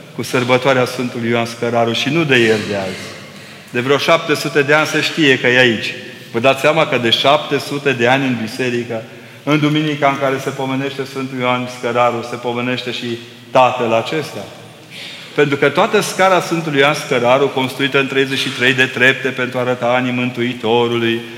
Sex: male